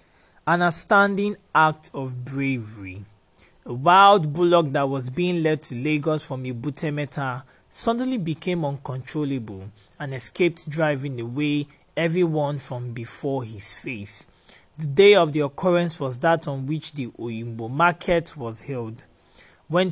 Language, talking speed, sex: English, 130 wpm, male